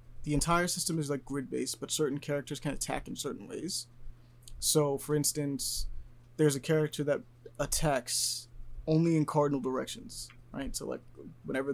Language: English